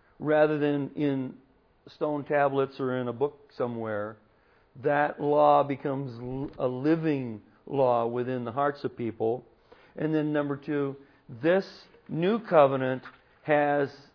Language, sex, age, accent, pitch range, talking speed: English, male, 50-69, American, 125-150 Hz, 125 wpm